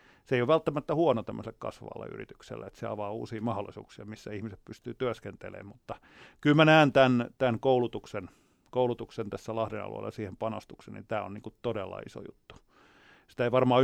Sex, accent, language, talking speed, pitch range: male, native, Finnish, 175 wpm, 110-130 Hz